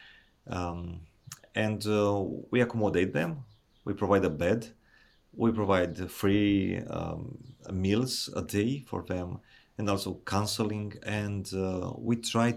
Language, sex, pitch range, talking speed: English, male, 95-115 Hz, 125 wpm